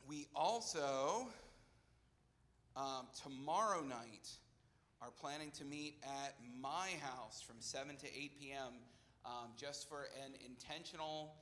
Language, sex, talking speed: English, male, 110 wpm